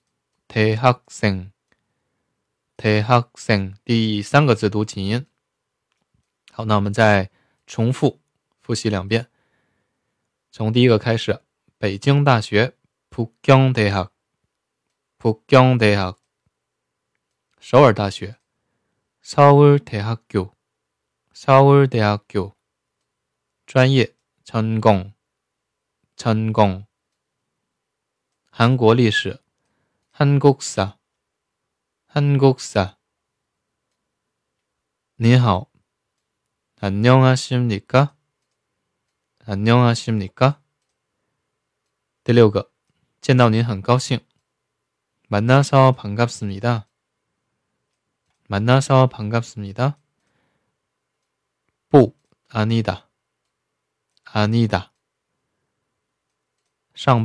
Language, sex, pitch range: Chinese, male, 105-130 Hz